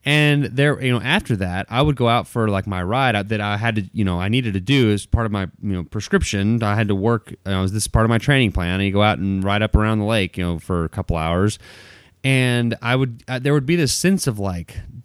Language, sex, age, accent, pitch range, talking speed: English, male, 30-49, American, 95-125 Hz, 280 wpm